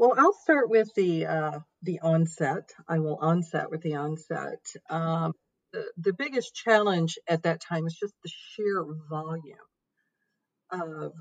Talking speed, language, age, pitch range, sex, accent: 150 wpm, English, 50-69, 155-185 Hz, female, American